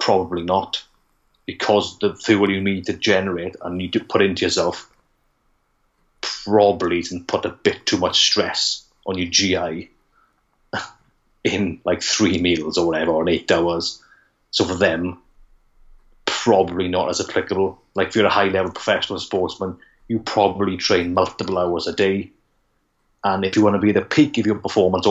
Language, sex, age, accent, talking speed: English, male, 30-49, British, 165 wpm